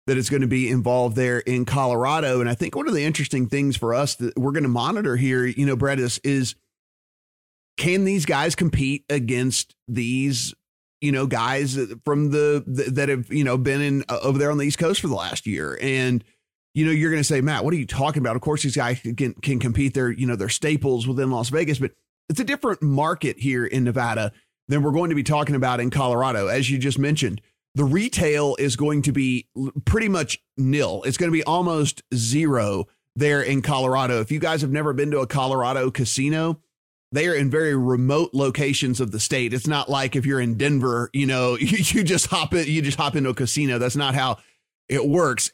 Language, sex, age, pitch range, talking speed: English, male, 30-49, 125-145 Hz, 225 wpm